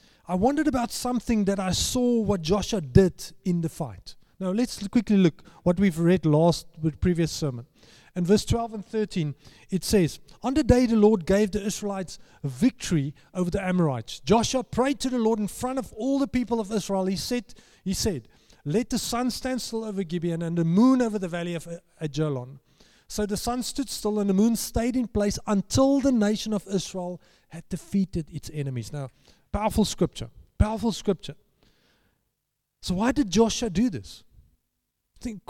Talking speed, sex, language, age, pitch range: 185 wpm, male, English, 30-49, 170-235 Hz